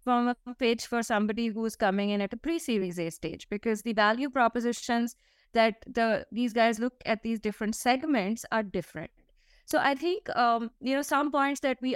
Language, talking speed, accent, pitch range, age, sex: English, 195 wpm, Indian, 195-245 Hz, 20-39, female